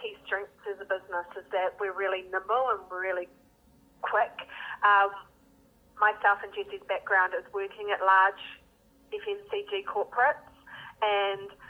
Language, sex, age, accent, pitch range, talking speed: English, female, 30-49, Australian, 180-215 Hz, 125 wpm